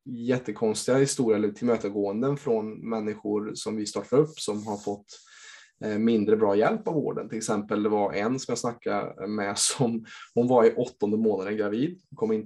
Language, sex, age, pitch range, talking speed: Swedish, male, 20-39, 105-130 Hz, 180 wpm